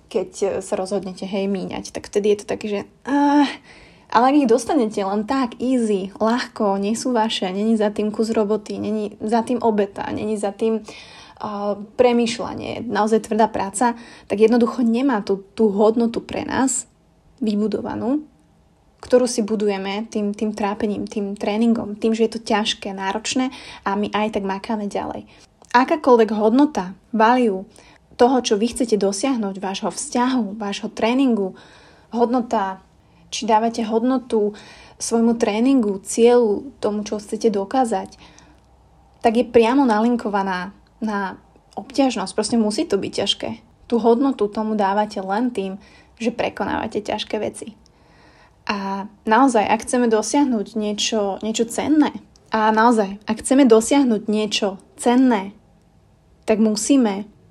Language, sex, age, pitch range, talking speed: Slovak, female, 20-39, 205-240 Hz, 135 wpm